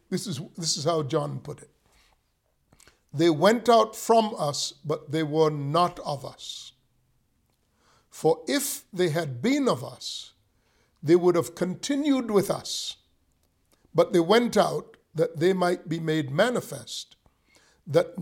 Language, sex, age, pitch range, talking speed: English, male, 50-69, 130-205 Hz, 140 wpm